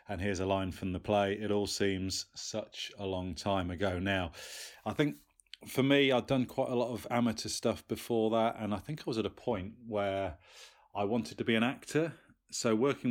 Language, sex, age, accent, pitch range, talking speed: English, male, 30-49, British, 105-125 Hz, 215 wpm